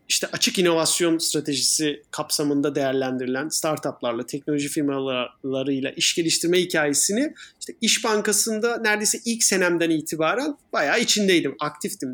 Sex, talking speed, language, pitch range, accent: male, 110 wpm, Turkish, 150-210 Hz, native